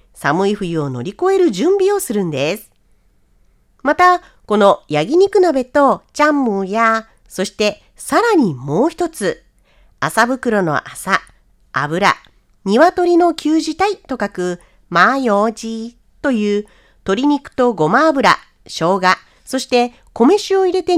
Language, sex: Japanese, female